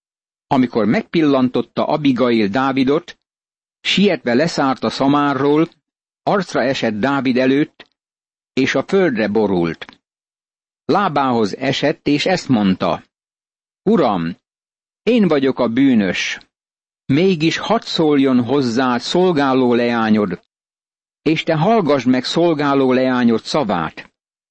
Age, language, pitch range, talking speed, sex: 60-79, Hungarian, 125-160 Hz, 95 wpm, male